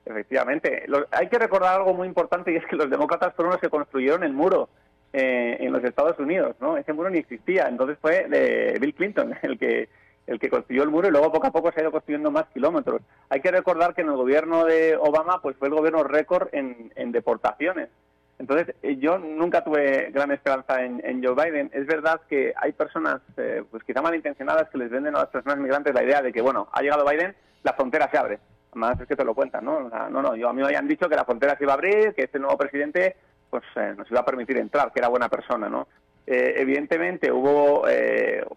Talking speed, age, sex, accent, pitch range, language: 235 wpm, 30-49, male, Spanish, 135-175 Hz, Spanish